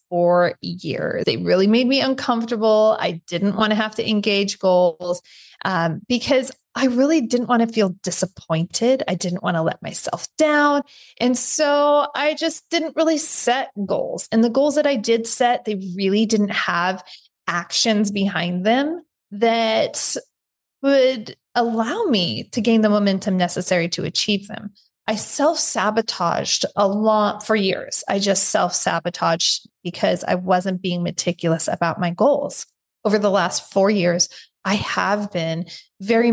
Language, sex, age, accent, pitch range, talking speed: English, female, 20-39, American, 185-235 Hz, 155 wpm